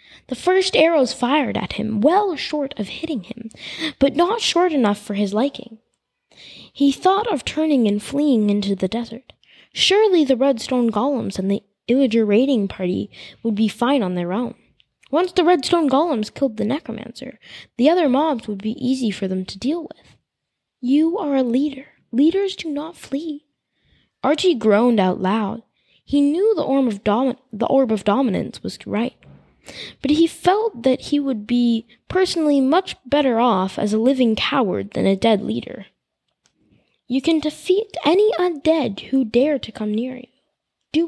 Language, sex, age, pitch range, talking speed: English, female, 20-39, 230-315 Hz, 165 wpm